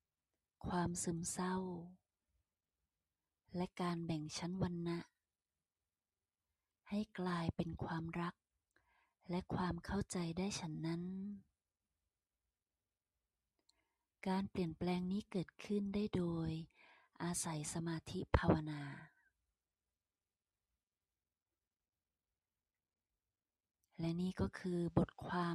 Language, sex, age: Thai, female, 20-39